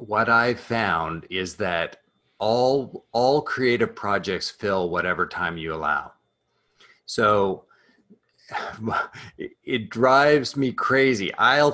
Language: English